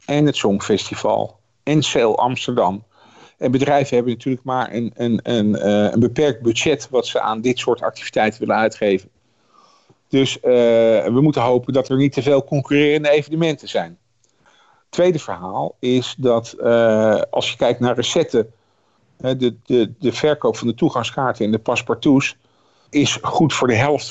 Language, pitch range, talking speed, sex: Dutch, 115-145 Hz, 145 wpm, male